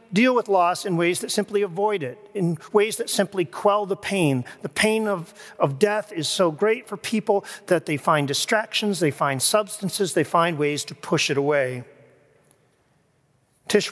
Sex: male